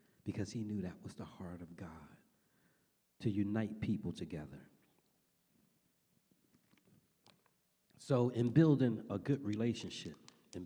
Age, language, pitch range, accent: 40-59, English, 95-135 Hz, American